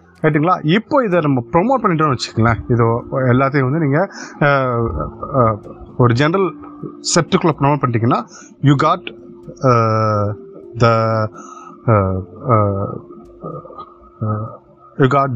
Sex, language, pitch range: male, Tamil, 110-150 Hz